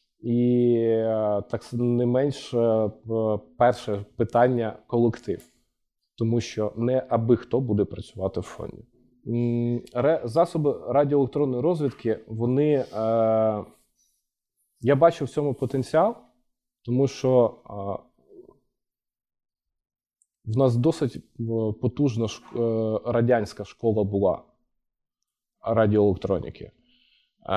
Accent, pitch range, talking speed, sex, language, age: native, 105-125 Hz, 75 wpm, male, Ukrainian, 20-39